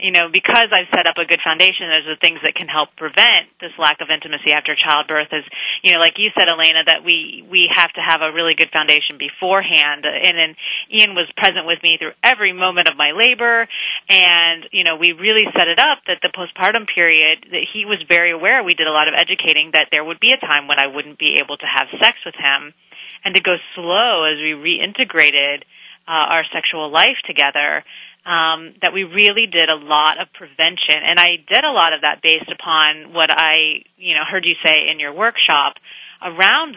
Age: 30-49